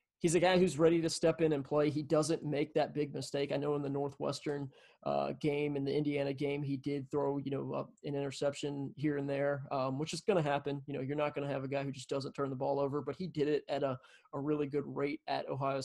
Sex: male